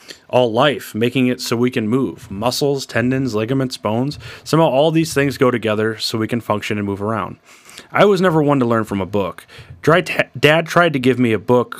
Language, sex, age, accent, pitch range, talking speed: English, male, 30-49, American, 110-140 Hz, 215 wpm